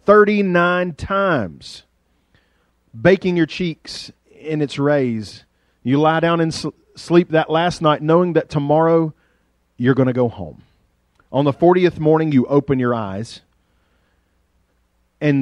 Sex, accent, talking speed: male, American, 130 wpm